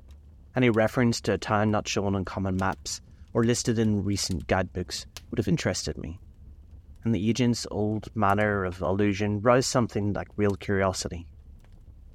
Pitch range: 80-105 Hz